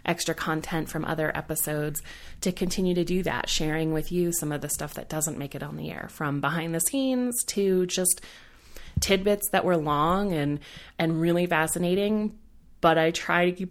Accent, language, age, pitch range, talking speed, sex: American, English, 30-49, 155-190 Hz, 190 wpm, female